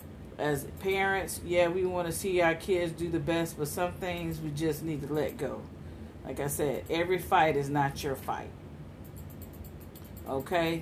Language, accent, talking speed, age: English, American, 170 wpm, 40-59